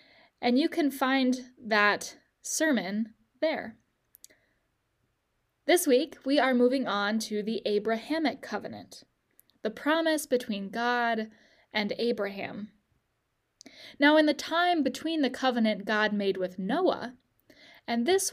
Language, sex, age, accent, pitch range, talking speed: English, female, 10-29, American, 210-280 Hz, 120 wpm